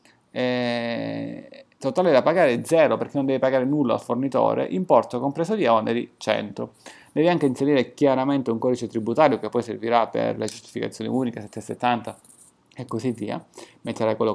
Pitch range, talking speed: 115-145 Hz, 155 wpm